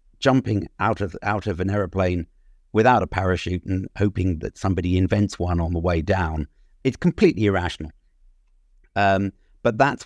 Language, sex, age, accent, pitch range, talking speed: English, male, 50-69, British, 90-115 Hz, 155 wpm